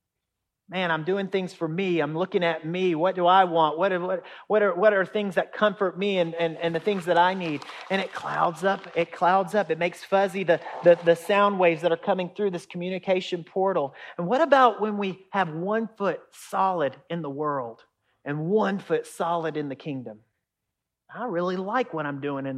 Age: 40-59